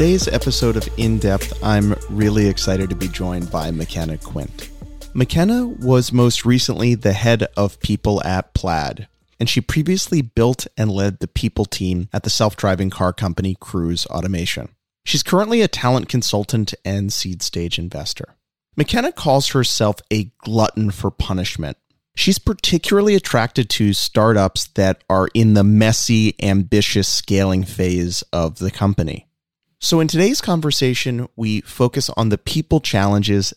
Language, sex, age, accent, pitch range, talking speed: English, male, 30-49, American, 95-125 Hz, 145 wpm